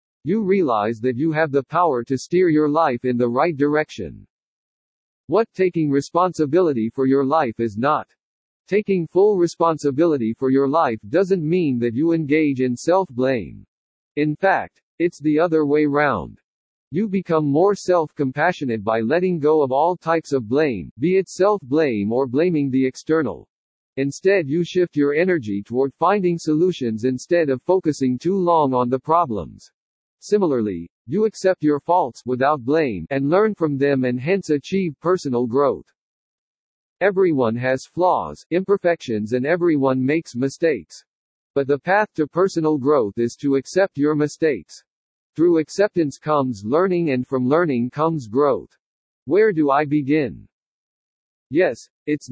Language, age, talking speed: English, 50-69, 145 wpm